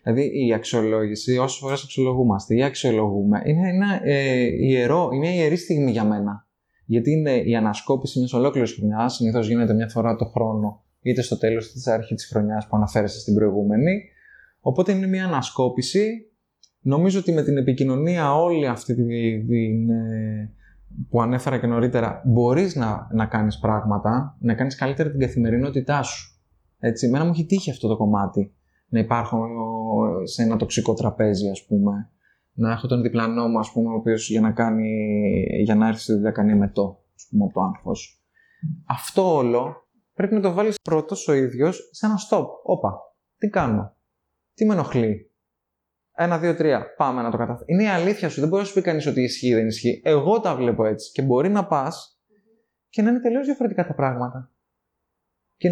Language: Greek